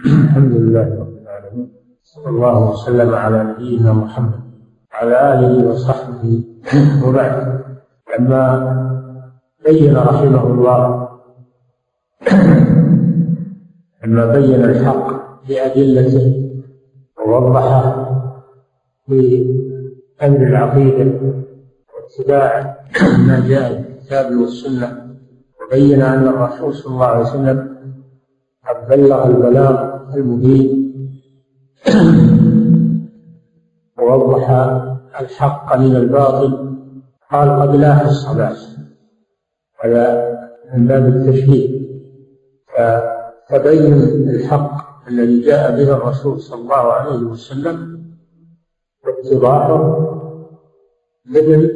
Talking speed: 75 wpm